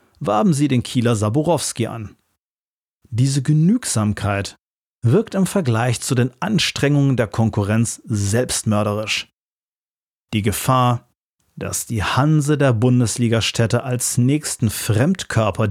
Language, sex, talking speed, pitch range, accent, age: German, male, 105 wpm, 105-130 Hz, German, 40-59